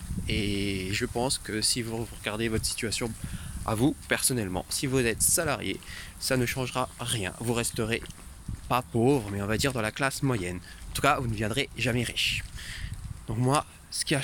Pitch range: 105-125 Hz